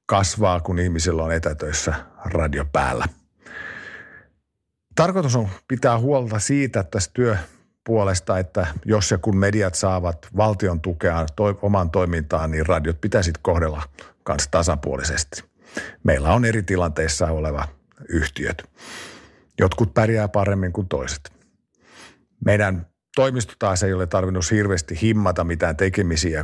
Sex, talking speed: male, 120 wpm